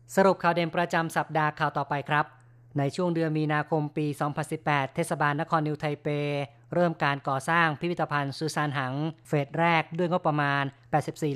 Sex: female